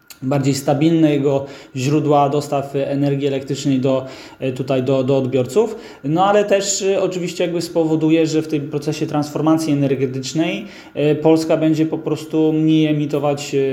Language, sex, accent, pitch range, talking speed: Polish, male, native, 130-160 Hz, 120 wpm